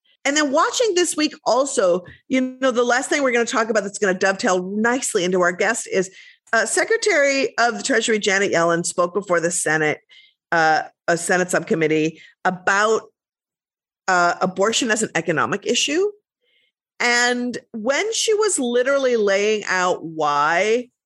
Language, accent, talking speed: English, American, 155 wpm